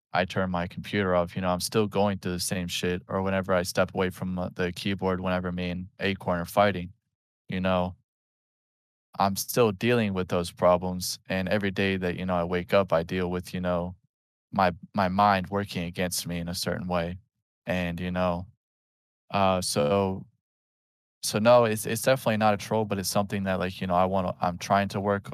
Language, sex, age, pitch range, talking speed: English, male, 20-39, 90-100 Hz, 210 wpm